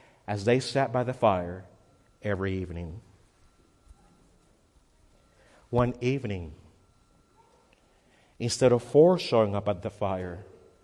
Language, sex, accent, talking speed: English, male, American, 100 wpm